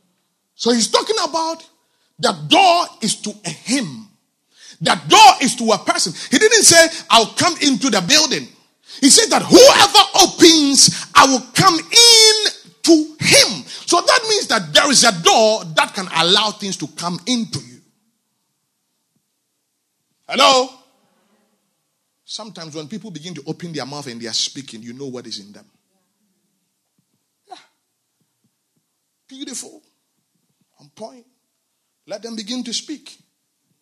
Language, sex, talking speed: English, male, 140 wpm